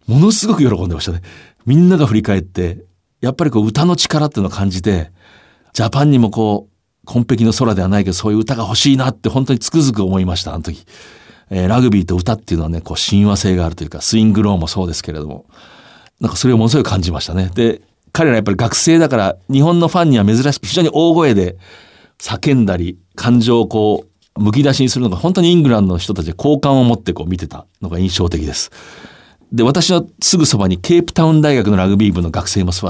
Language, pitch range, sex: Japanese, 90-120 Hz, male